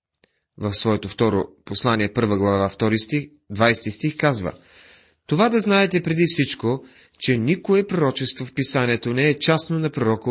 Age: 30-49